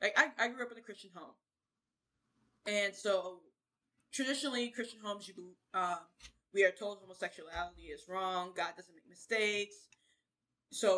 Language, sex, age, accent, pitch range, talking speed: English, female, 20-39, American, 180-240 Hz, 150 wpm